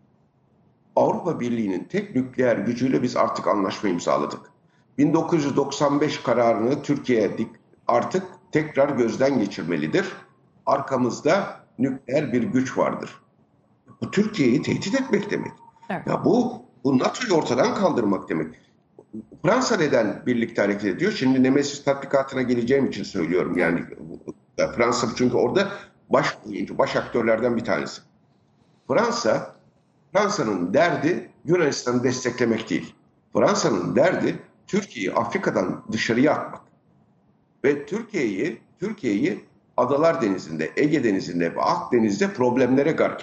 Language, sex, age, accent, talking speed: Turkish, male, 60-79, native, 105 wpm